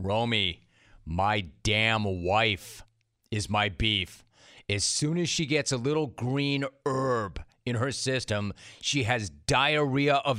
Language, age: English, 30-49